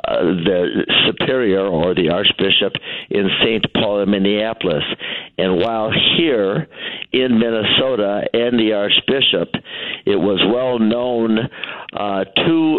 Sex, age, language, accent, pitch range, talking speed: male, 60-79, English, American, 105-120 Hz, 115 wpm